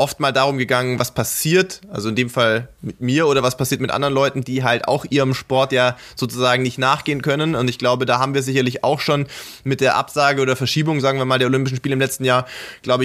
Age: 20-39